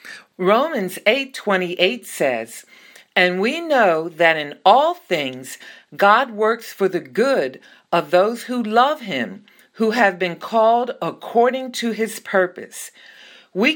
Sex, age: female, 50-69